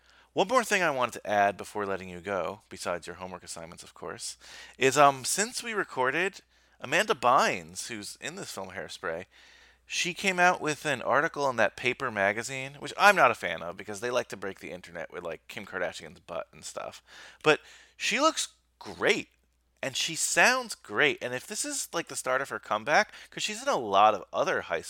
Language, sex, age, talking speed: English, male, 30-49, 205 wpm